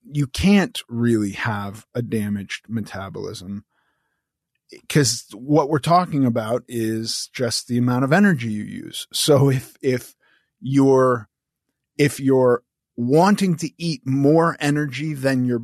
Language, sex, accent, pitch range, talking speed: English, male, American, 115-145 Hz, 125 wpm